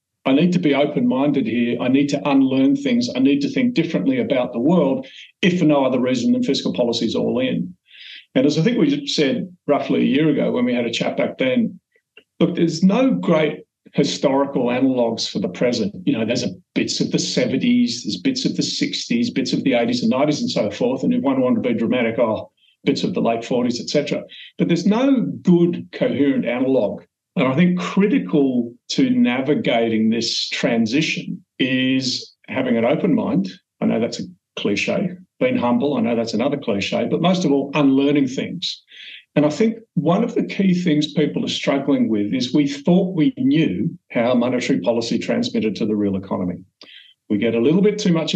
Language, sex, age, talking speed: English, male, 40-59, 200 wpm